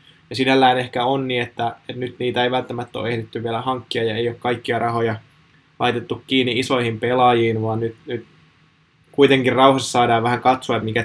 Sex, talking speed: male, 180 wpm